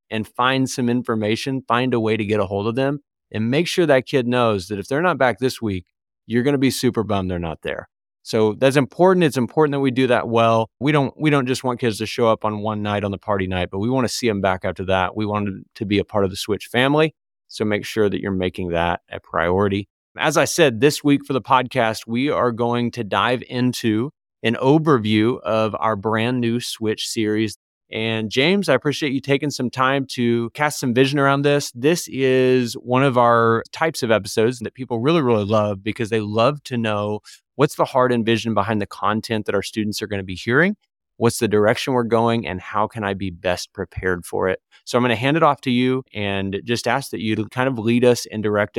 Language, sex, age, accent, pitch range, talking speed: English, male, 30-49, American, 105-130 Hz, 240 wpm